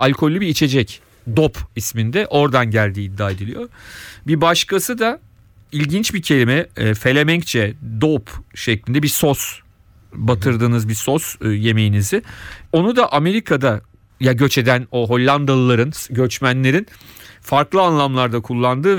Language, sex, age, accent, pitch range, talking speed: Turkish, male, 40-59, native, 110-150 Hz, 115 wpm